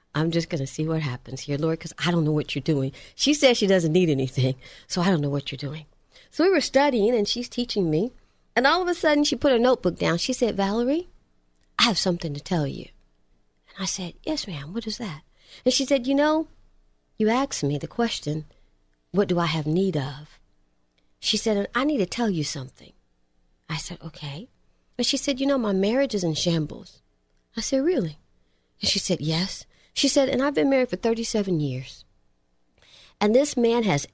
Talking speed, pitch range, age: 215 wpm, 145-235 Hz, 40-59